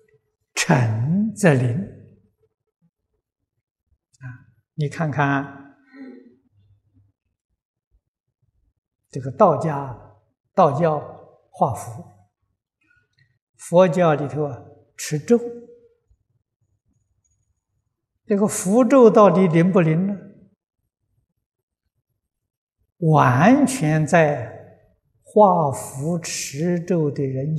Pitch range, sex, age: 110-175 Hz, male, 60-79